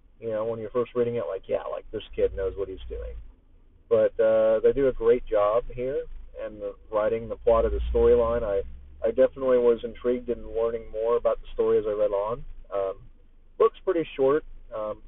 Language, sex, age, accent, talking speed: English, male, 30-49, American, 205 wpm